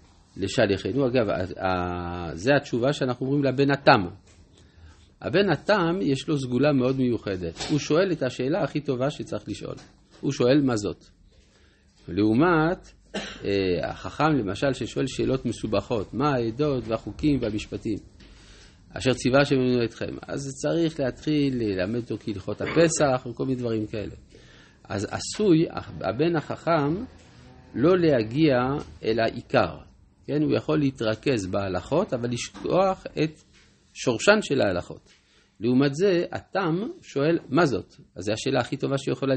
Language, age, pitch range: Hebrew, 50-69, 105-150 Hz